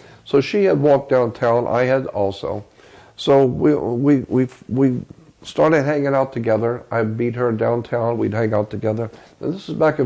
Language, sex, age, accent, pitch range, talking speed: English, male, 50-69, American, 115-140 Hz, 175 wpm